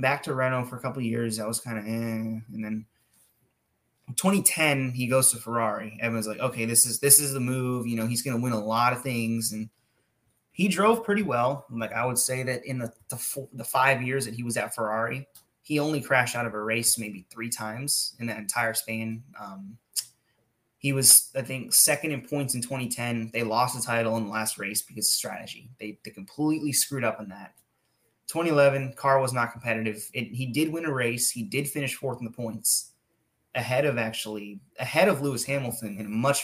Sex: male